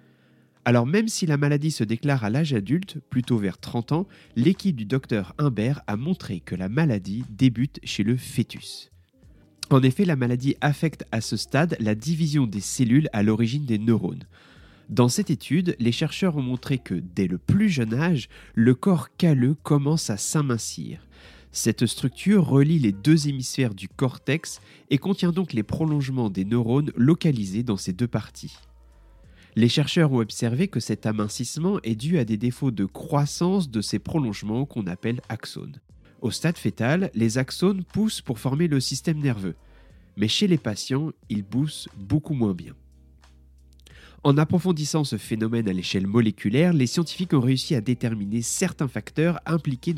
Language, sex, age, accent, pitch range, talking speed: French, male, 30-49, French, 110-155 Hz, 165 wpm